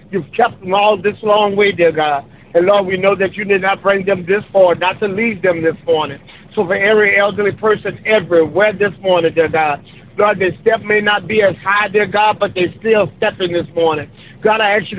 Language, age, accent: English, 50-69, American